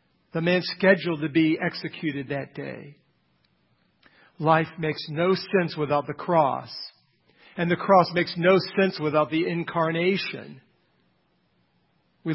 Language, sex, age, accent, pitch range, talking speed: English, male, 50-69, American, 150-185 Hz, 120 wpm